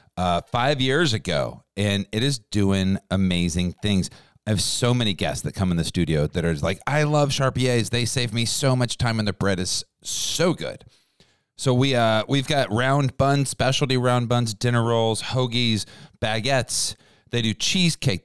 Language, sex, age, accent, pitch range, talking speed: English, male, 40-59, American, 95-130 Hz, 180 wpm